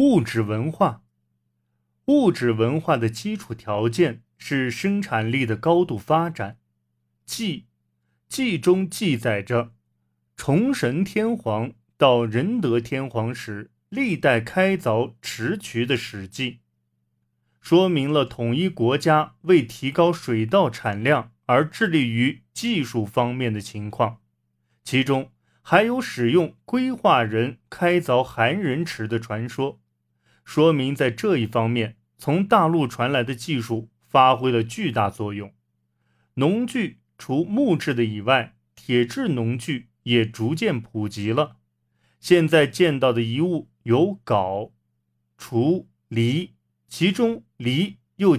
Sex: male